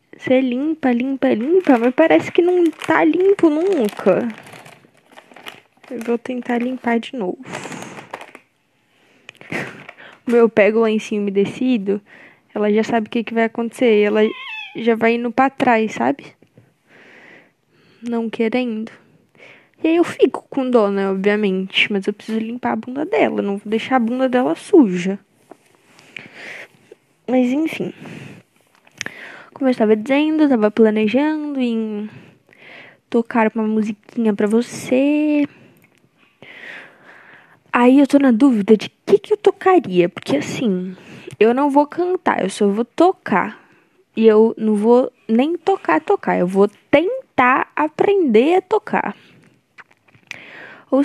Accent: Brazilian